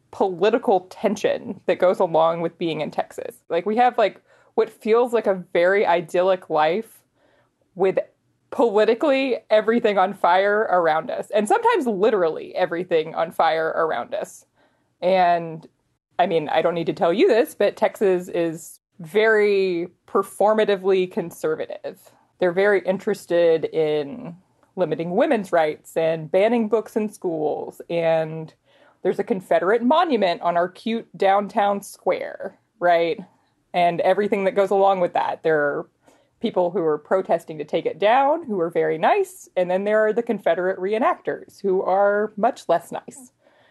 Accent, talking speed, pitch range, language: American, 145 wpm, 175-225 Hz, English